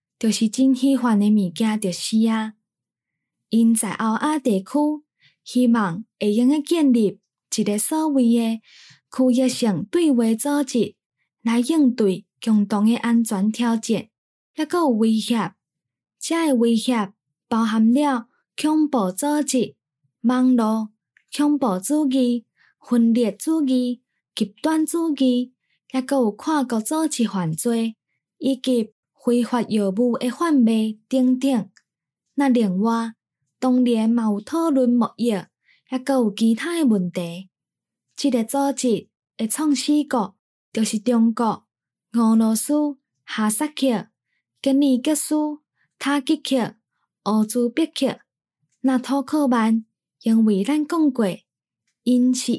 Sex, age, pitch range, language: female, 10-29, 215-270 Hz, Chinese